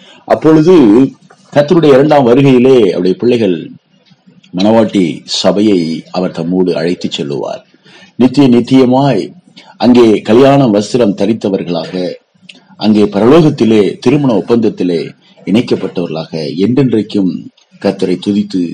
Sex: male